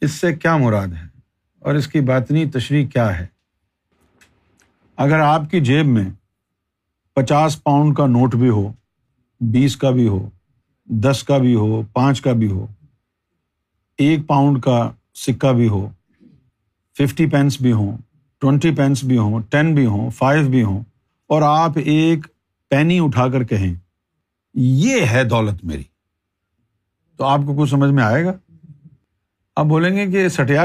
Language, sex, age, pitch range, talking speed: Urdu, male, 50-69, 115-160 Hz, 155 wpm